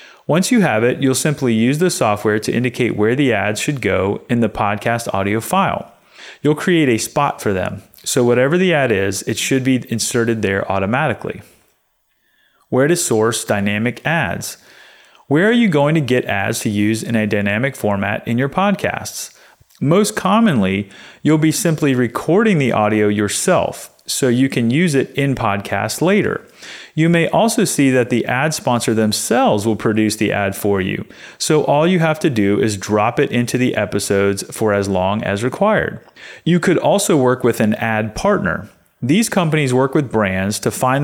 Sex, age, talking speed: male, 30-49, 180 wpm